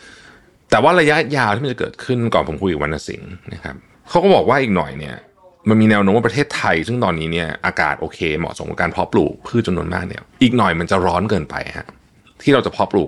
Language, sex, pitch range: Thai, male, 90-140 Hz